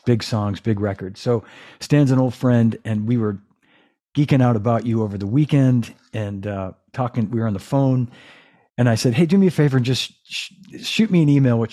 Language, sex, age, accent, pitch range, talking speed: English, male, 50-69, American, 110-135 Hz, 215 wpm